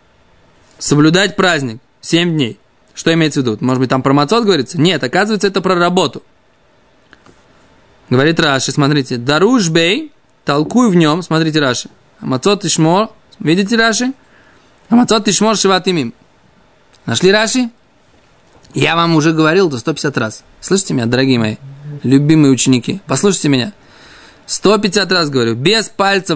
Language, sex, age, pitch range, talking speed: Russian, male, 20-39, 140-195 Hz, 135 wpm